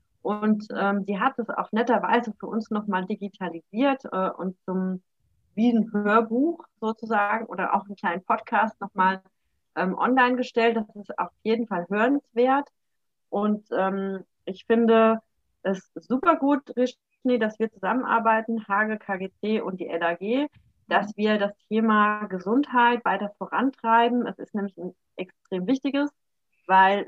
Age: 30-49